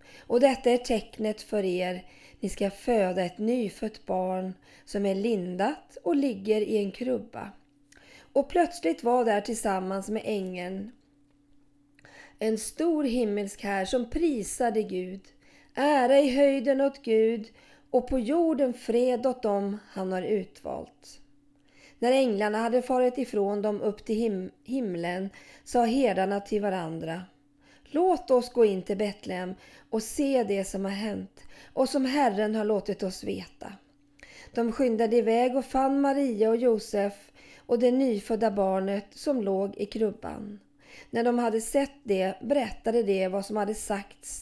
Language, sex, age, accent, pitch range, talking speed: Swedish, female, 30-49, native, 195-245 Hz, 145 wpm